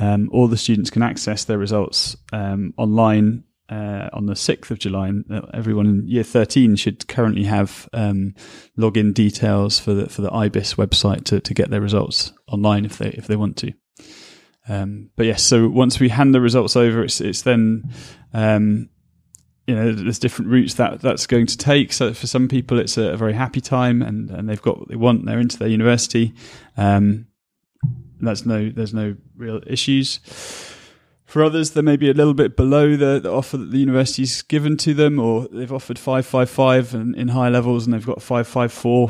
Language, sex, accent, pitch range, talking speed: English, male, British, 105-125 Hz, 195 wpm